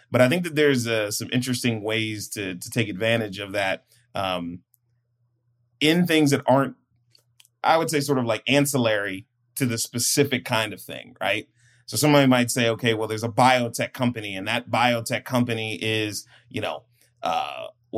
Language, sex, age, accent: English, male, 30-49, American